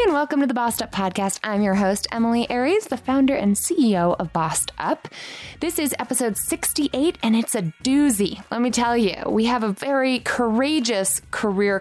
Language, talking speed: English, 190 wpm